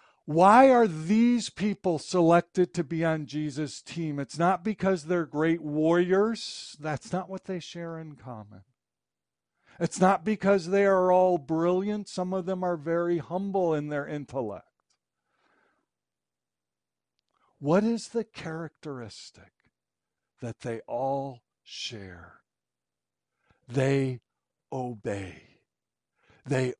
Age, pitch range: 60-79, 120-180 Hz